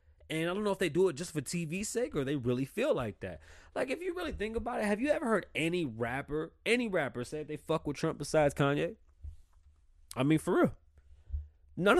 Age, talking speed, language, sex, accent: 20-39, 225 wpm, English, male, American